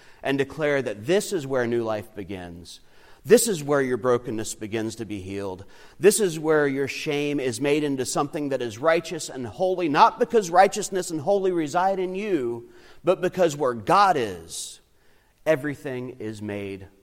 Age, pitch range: 40-59, 90-135 Hz